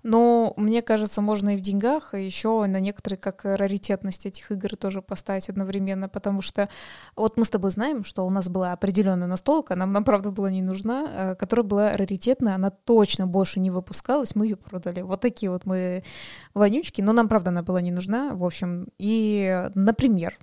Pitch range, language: 185-215 Hz, Russian